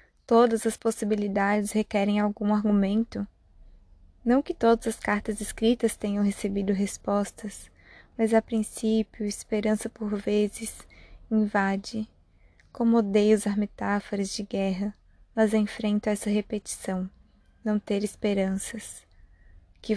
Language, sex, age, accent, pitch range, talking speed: Portuguese, female, 20-39, Brazilian, 200-220 Hz, 110 wpm